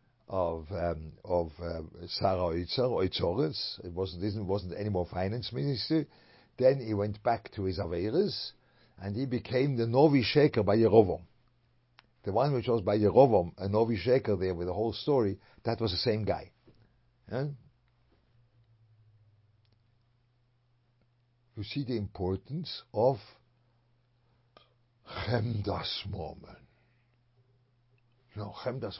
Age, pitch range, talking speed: 60-79, 105-125 Hz, 120 wpm